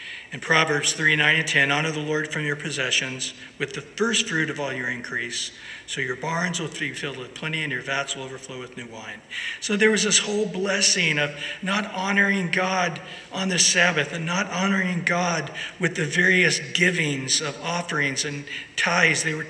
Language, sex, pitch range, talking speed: English, male, 145-190 Hz, 190 wpm